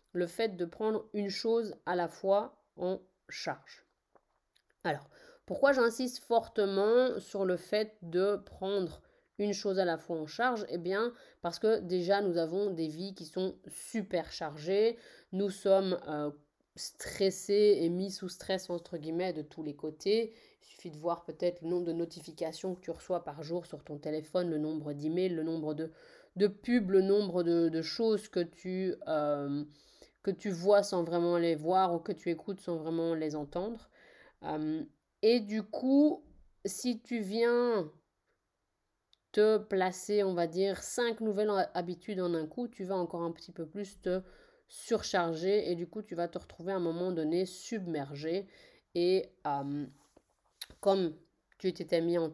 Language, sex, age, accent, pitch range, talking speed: French, female, 30-49, French, 170-205 Hz, 170 wpm